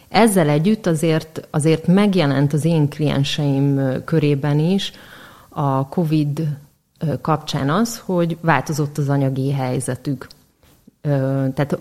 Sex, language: female, Hungarian